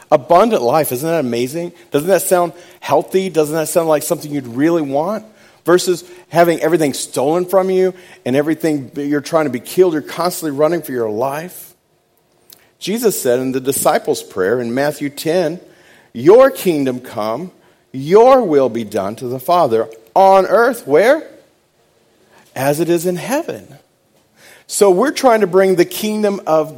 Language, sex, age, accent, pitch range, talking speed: English, male, 40-59, American, 120-175 Hz, 160 wpm